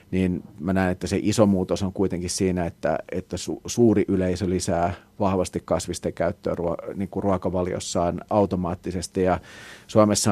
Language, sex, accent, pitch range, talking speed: Finnish, male, native, 90-100 Hz, 145 wpm